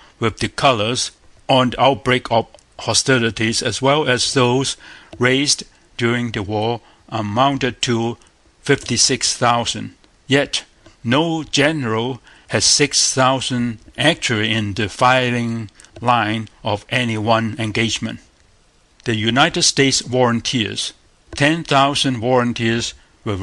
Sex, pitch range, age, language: male, 110-130 Hz, 60-79, Korean